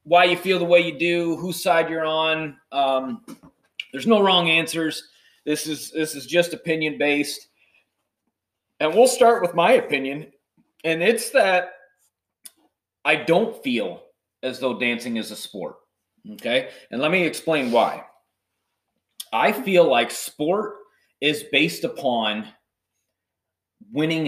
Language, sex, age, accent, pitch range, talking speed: English, male, 30-49, American, 115-175 Hz, 130 wpm